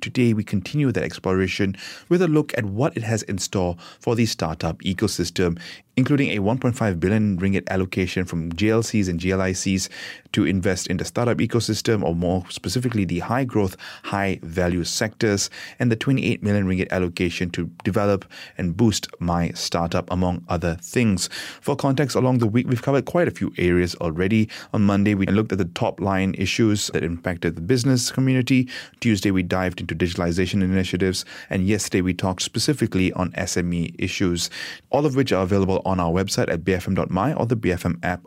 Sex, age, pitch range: male, 30-49, 90-115 Hz